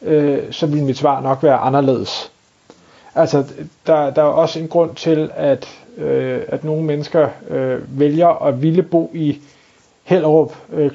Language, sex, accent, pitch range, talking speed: Danish, male, native, 140-160 Hz, 160 wpm